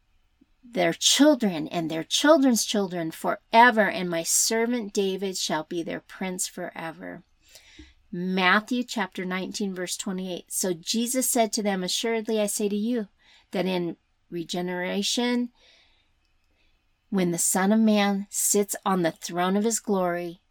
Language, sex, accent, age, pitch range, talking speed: English, female, American, 40-59, 165-220 Hz, 135 wpm